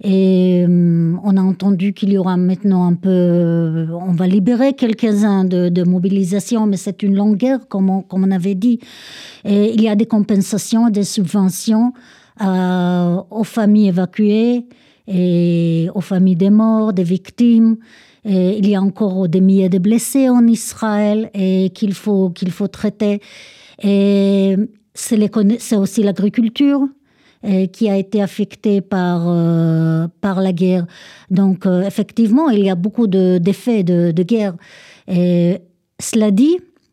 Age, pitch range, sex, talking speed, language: 60-79, 185-220 Hz, female, 150 wpm, Italian